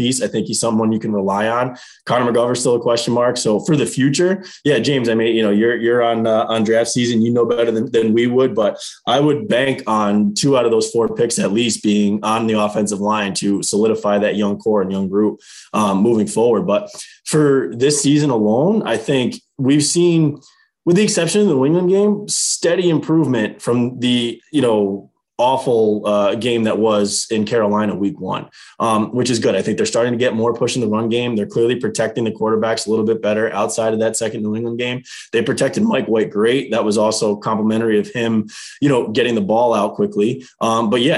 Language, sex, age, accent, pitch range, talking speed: English, male, 20-39, American, 110-130 Hz, 220 wpm